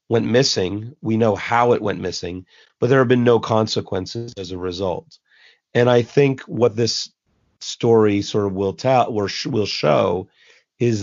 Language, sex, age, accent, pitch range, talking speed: English, male, 40-59, American, 105-125 Hz, 175 wpm